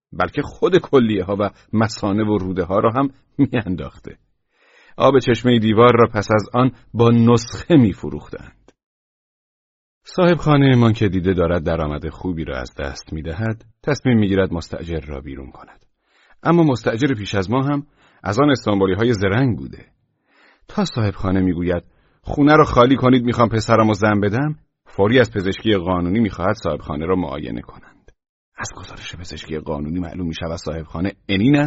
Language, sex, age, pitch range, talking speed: Persian, male, 40-59, 90-125 Hz, 150 wpm